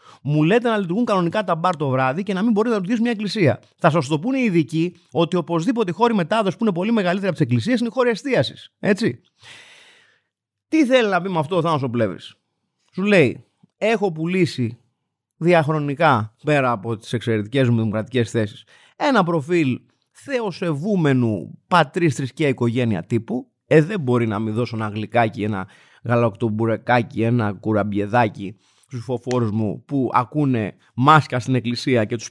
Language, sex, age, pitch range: Greek, male, 30-49, 120-190 Hz